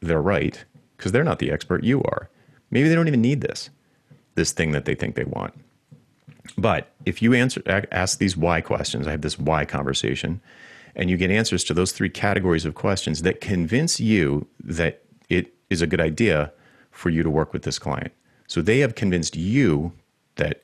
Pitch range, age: 75-100 Hz, 30-49